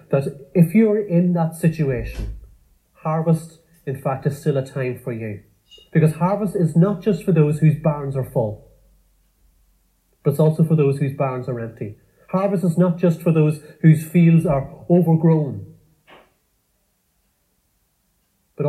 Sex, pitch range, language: male, 125-155 Hz, English